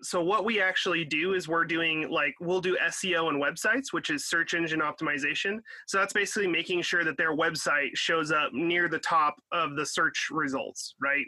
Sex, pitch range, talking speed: male, 155-185 Hz, 195 wpm